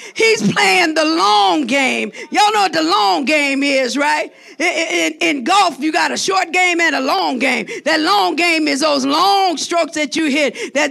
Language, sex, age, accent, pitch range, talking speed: English, female, 50-69, American, 320-420 Hz, 200 wpm